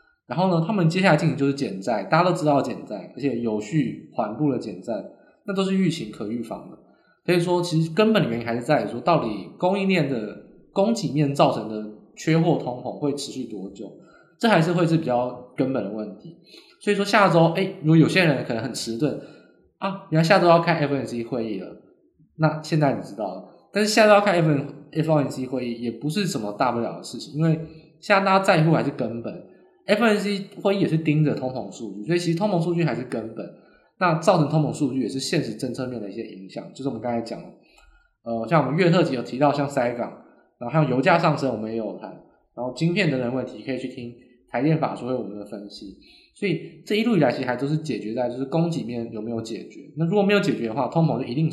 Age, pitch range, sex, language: 20-39, 125-175 Hz, male, Chinese